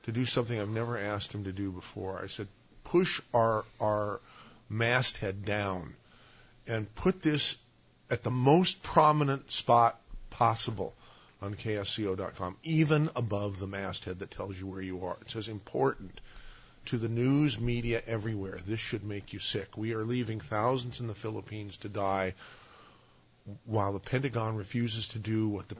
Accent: American